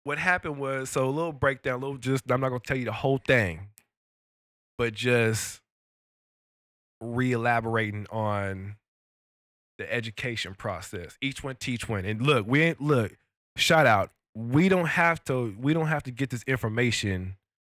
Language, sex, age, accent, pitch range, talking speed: English, male, 20-39, American, 100-125 Hz, 155 wpm